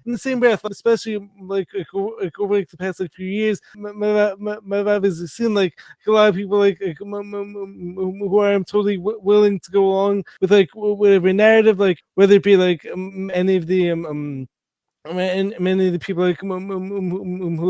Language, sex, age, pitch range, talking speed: English, male, 20-39, 185-215 Hz, 200 wpm